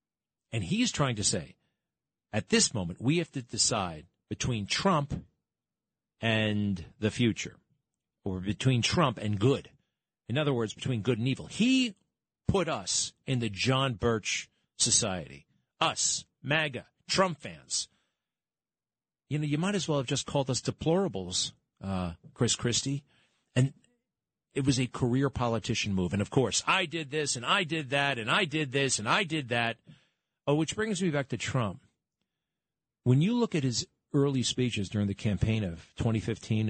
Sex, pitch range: male, 105-140 Hz